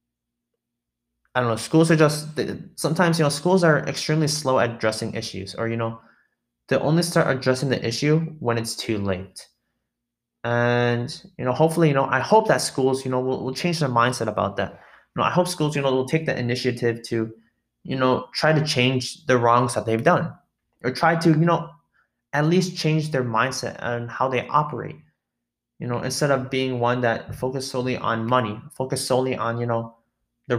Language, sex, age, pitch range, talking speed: English, male, 20-39, 115-150 Hz, 200 wpm